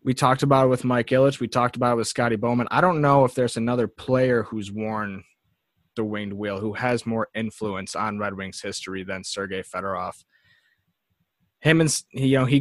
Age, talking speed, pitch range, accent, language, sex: 20-39, 180 wpm, 115-135 Hz, American, English, male